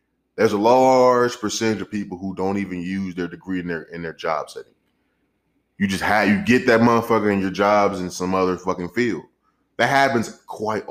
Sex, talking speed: male, 200 wpm